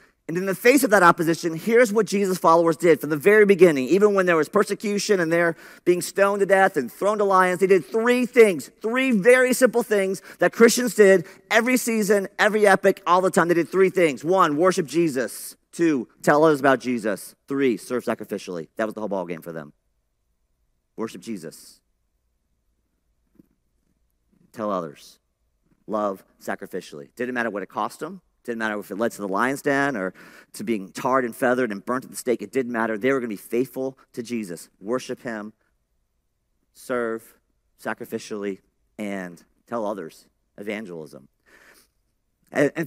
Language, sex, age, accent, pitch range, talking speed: English, male, 40-59, American, 125-210 Hz, 170 wpm